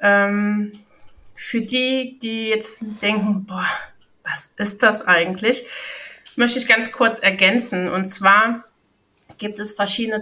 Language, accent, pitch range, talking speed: German, German, 195-245 Hz, 115 wpm